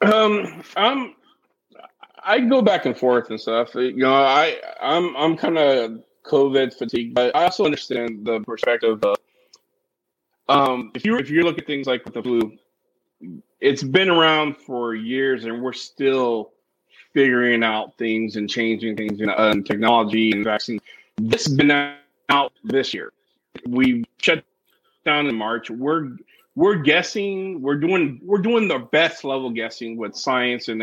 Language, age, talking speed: English, 30-49, 160 wpm